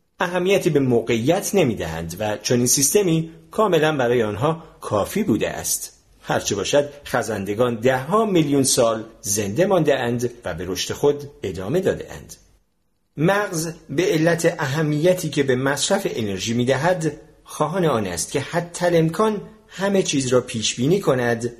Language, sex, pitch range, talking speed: Persian, male, 115-160 Hz, 140 wpm